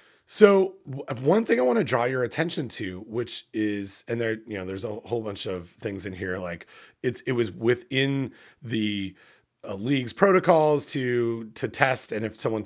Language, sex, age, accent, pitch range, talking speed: English, male, 30-49, American, 105-140 Hz, 185 wpm